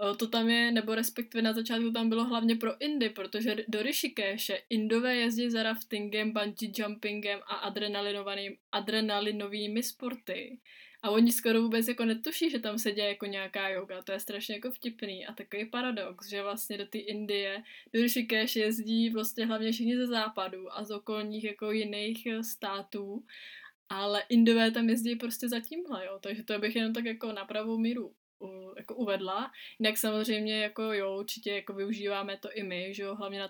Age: 20-39